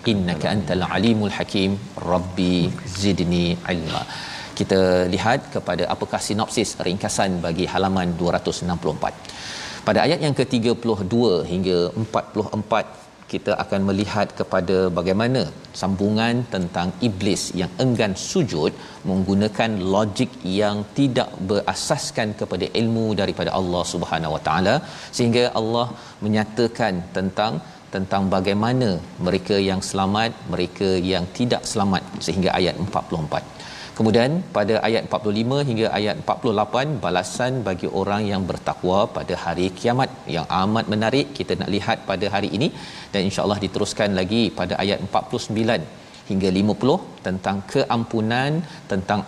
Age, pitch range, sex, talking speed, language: 40-59, 95-115 Hz, male, 120 wpm, Malayalam